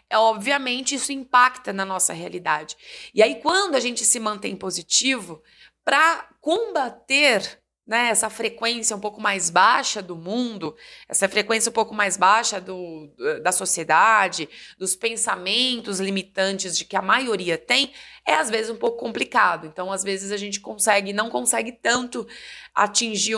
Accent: Brazilian